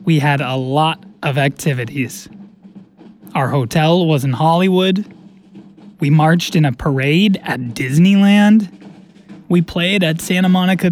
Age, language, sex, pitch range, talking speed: 20-39, German, male, 145-180 Hz, 125 wpm